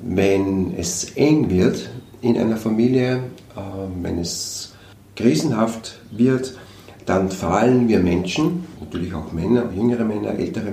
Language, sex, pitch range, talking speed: German, male, 95-115 Hz, 115 wpm